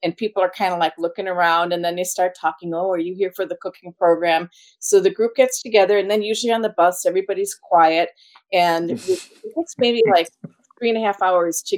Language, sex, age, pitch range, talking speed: English, female, 40-59, 165-190 Hz, 230 wpm